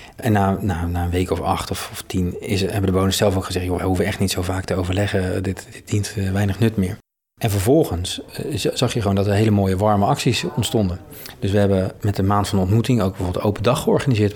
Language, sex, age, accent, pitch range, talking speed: Dutch, male, 40-59, Dutch, 100-120 Hz, 255 wpm